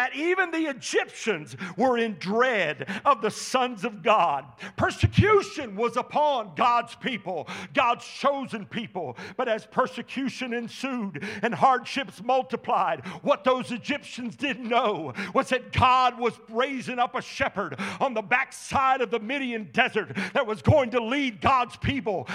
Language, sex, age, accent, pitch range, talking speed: English, male, 50-69, American, 240-335 Hz, 140 wpm